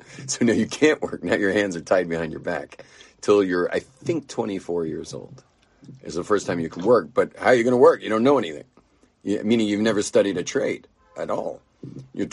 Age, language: 40-59, English